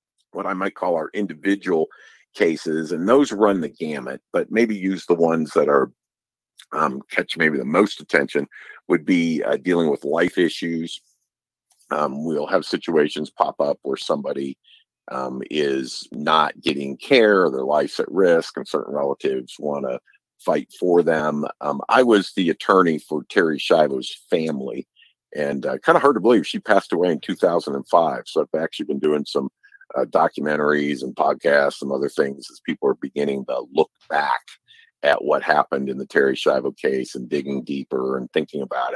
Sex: male